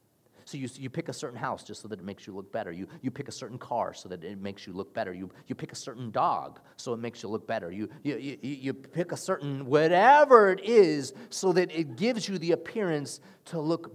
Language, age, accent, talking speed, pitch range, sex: English, 30-49, American, 255 wpm, 135-210 Hz, male